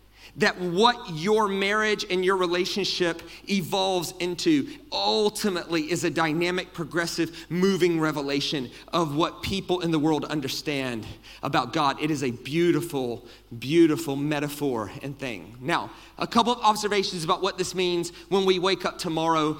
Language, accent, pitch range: English, American, 165-255 Hz